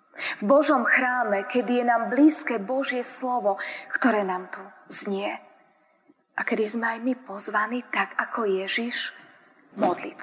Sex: female